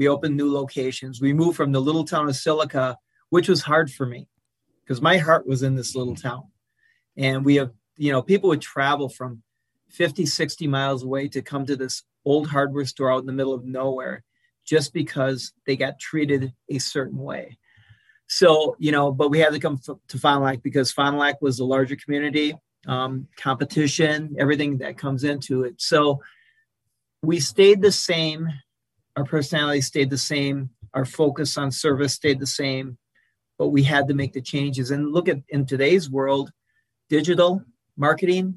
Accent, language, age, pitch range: American, English, 40-59, 135-155 Hz